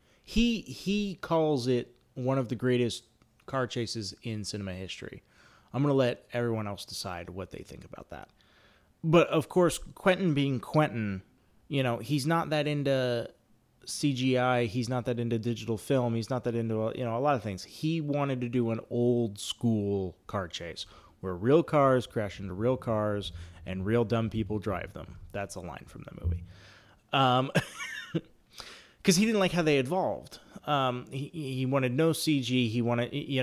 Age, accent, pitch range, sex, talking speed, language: 30-49, American, 105-130 Hz, male, 180 wpm, English